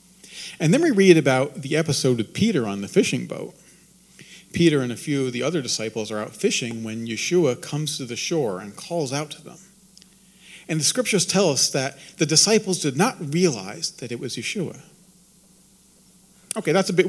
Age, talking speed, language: 40-59, 190 wpm, English